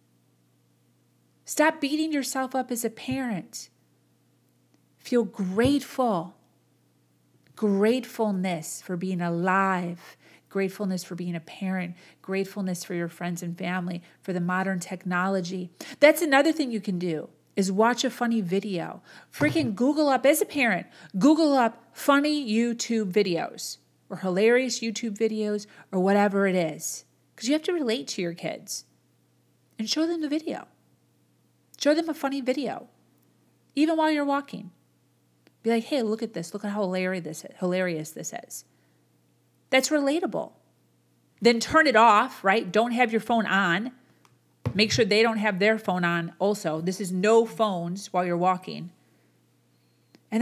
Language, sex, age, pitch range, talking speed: English, female, 40-59, 170-255 Hz, 145 wpm